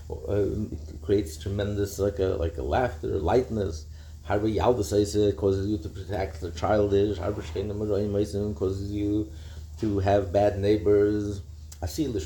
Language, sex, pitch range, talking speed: English, male, 95-110 Hz, 110 wpm